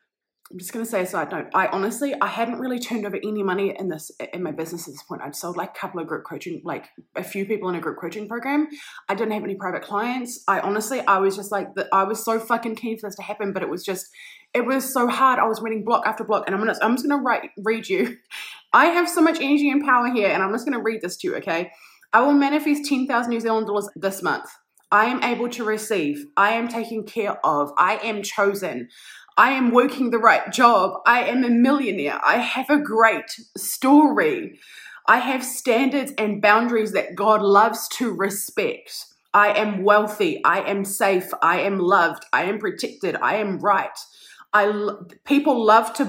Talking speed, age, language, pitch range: 220 wpm, 20-39, English, 205-280 Hz